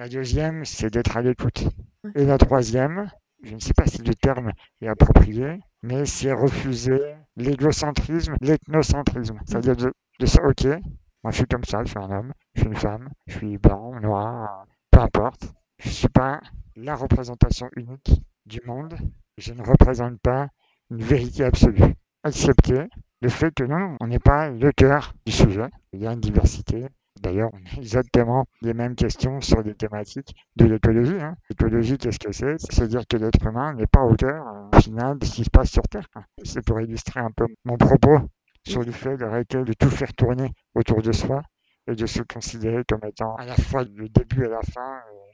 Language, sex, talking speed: French, male, 200 wpm